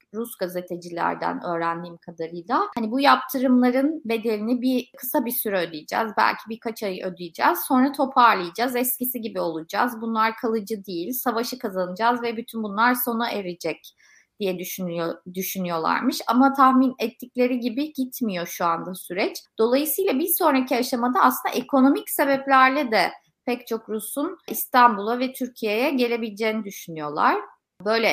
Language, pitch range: Turkish, 190-260 Hz